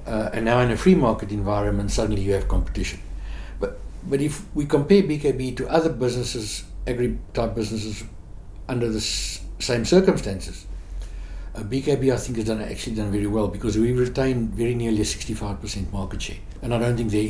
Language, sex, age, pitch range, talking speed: English, male, 60-79, 85-115 Hz, 180 wpm